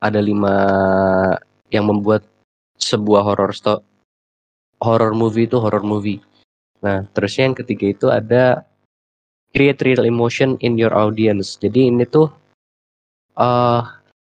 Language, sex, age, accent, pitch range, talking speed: Indonesian, male, 20-39, native, 100-115 Hz, 120 wpm